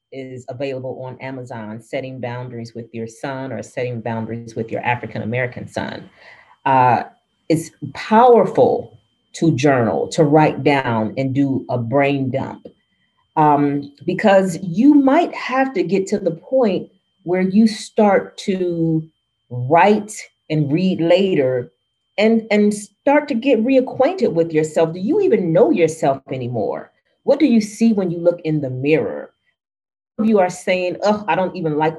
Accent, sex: American, female